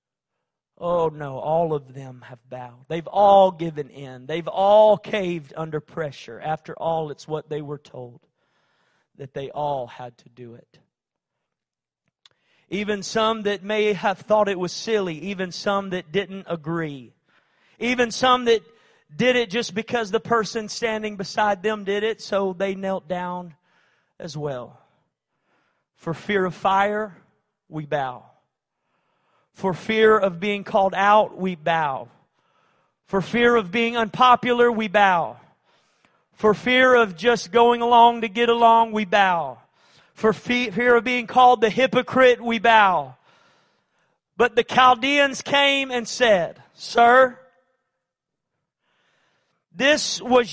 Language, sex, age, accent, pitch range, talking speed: English, male, 40-59, American, 170-235 Hz, 135 wpm